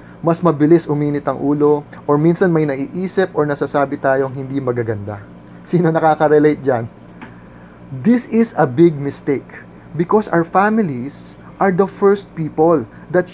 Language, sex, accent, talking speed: English, male, Filipino, 135 wpm